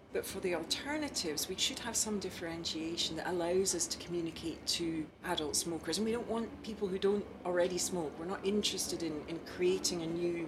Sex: female